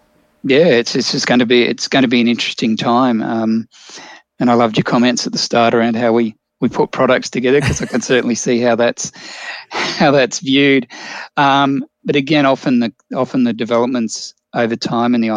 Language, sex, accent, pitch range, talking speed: English, male, Australian, 115-130 Hz, 205 wpm